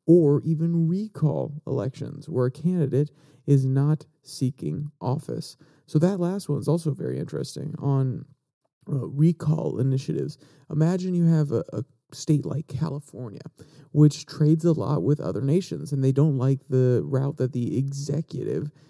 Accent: American